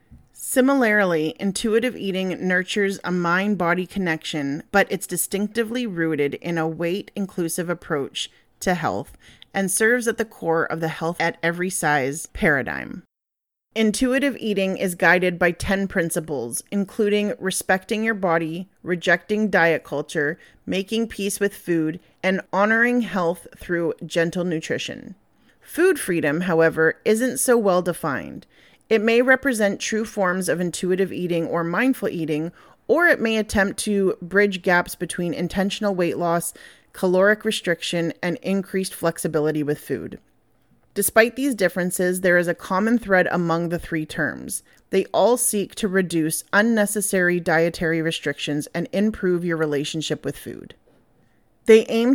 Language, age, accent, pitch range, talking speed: English, 30-49, American, 165-205 Hz, 130 wpm